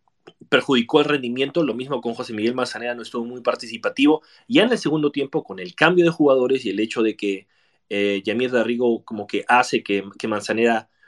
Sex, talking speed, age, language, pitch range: male, 200 wpm, 30-49, Spanish, 115-150 Hz